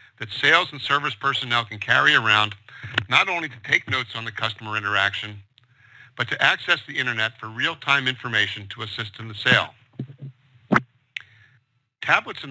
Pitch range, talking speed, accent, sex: 115-135 Hz, 155 wpm, American, male